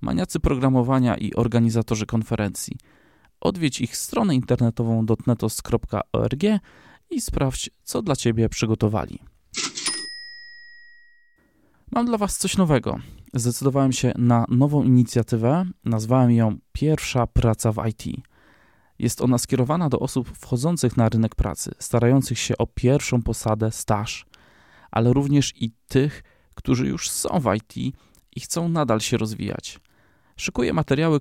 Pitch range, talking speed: 115-140 Hz, 120 wpm